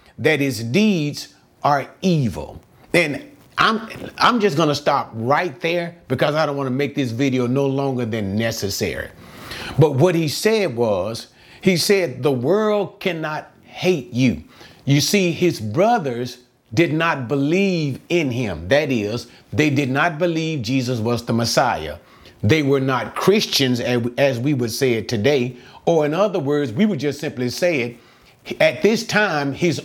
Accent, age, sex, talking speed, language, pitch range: American, 40-59, male, 165 wpm, English, 125-175 Hz